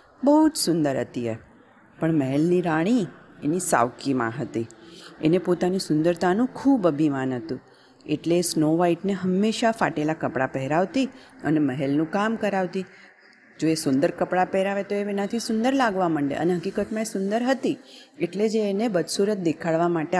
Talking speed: 140 wpm